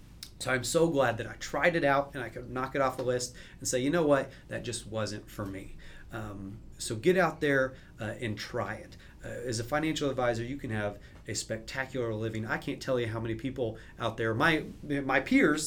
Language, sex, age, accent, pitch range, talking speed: English, male, 30-49, American, 110-145 Hz, 225 wpm